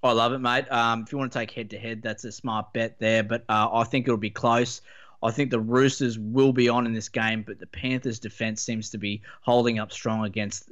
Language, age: English, 20-39